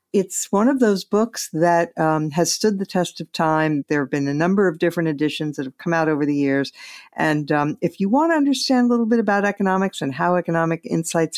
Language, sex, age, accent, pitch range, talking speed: English, female, 50-69, American, 150-190 Hz, 230 wpm